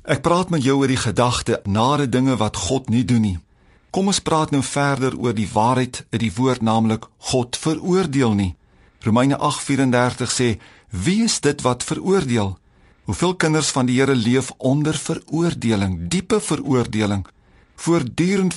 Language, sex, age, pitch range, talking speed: English, male, 50-69, 120-170 Hz, 155 wpm